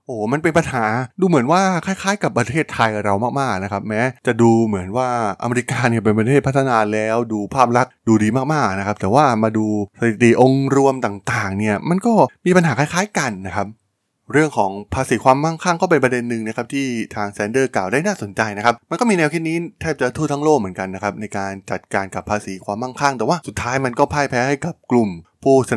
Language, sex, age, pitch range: Thai, male, 20-39, 105-135 Hz